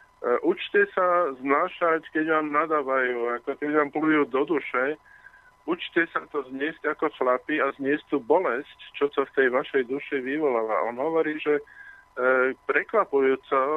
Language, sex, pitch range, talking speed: Slovak, male, 140-165 Hz, 140 wpm